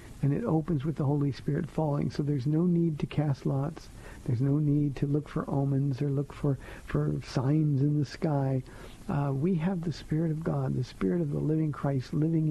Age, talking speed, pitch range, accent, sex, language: 50-69, 210 wpm, 125-150 Hz, American, male, English